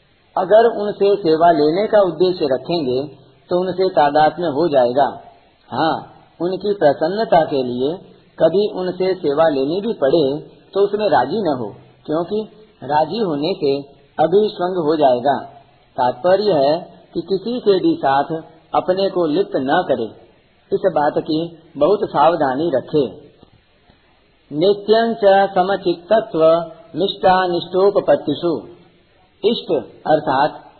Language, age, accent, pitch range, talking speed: Hindi, 50-69, native, 150-190 Hz, 110 wpm